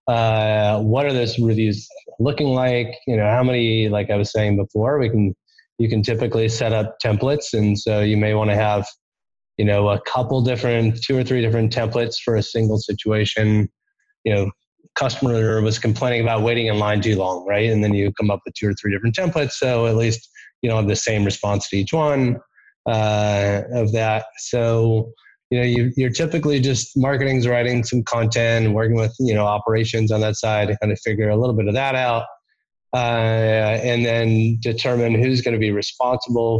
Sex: male